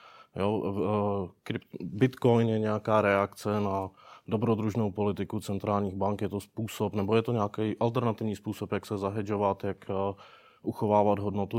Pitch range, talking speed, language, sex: 95-110 Hz, 125 wpm, Czech, male